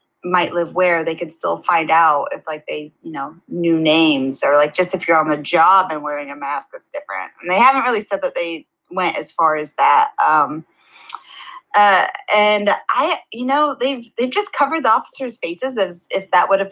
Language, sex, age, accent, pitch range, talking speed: English, female, 10-29, American, 170-265 Hz, 210 wpm